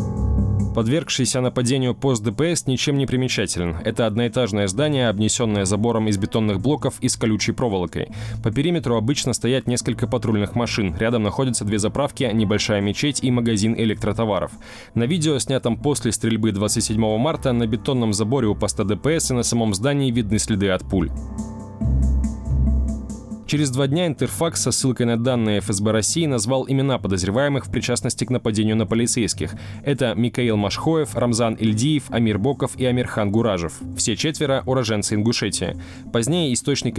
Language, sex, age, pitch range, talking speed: Russian, male, 20-39, 110-130 Hz, 150 wpm